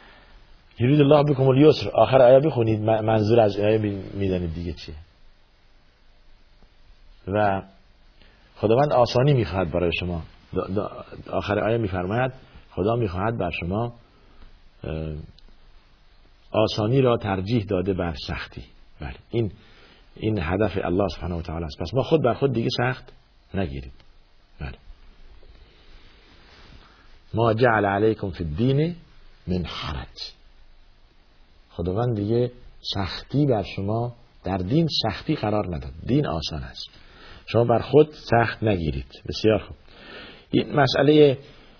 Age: 50-69